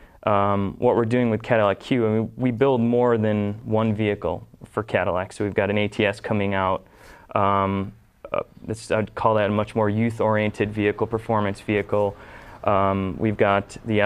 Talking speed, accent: 175 wpm, American